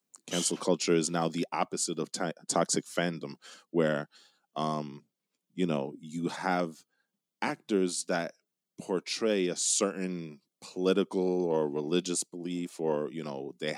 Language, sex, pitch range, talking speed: English, male, 80-95 Hz, 125 wpm